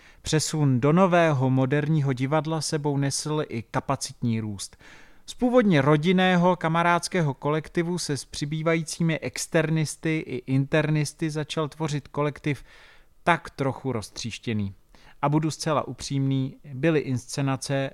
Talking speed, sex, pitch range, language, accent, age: 110 wpm, male, 130-160 Hz, Czech, native, 30-49